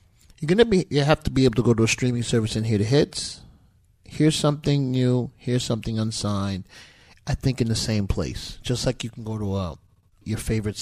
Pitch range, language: 100-115 Hz, English